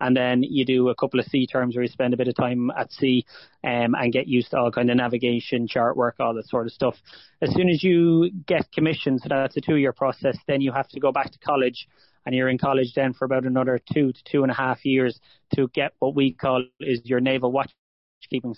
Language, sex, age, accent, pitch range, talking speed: English, male, 30-49, Irish, 125-135 Hz, 250 wpm